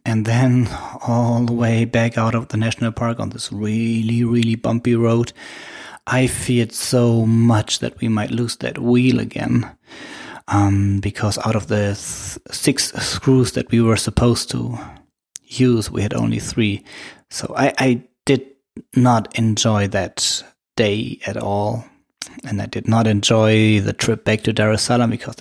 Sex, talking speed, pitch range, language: male, 165 wpm, 105-120 Hz, English